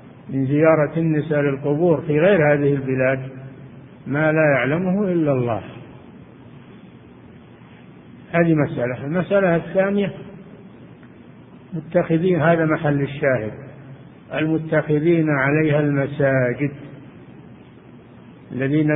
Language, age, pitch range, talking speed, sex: Arabic, 50-69, 135-165 Hz, 80 wpm, male